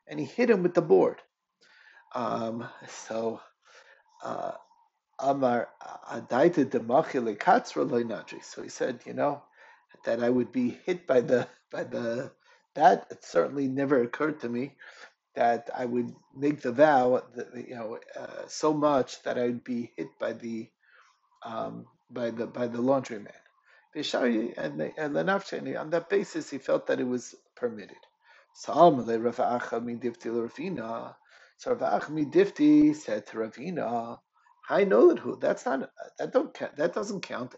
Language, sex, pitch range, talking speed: English, male, 120-195 Hz, 125 wpm